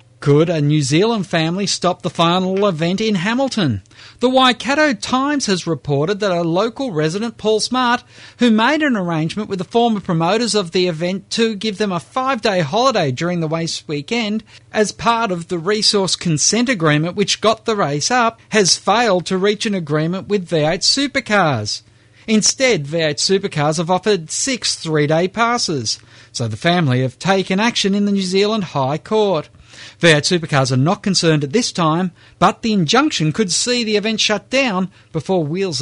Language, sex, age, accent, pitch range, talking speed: English, male, 40-59, Australian, 155-215 Hz, 175 wpm